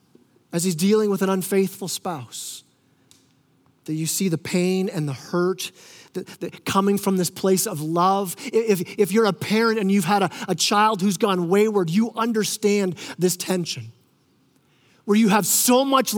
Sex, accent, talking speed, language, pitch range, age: male, American, 165 wpm, English, 170-225 Hz, 30-49